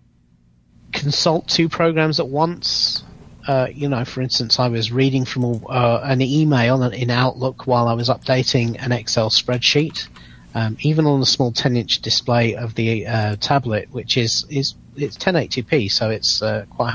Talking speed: 165 wpm